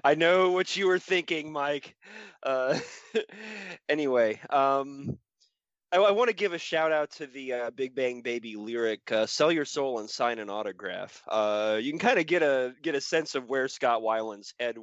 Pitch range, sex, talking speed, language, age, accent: 100-130 Hz, male, 190 wpm, English, 20-39, American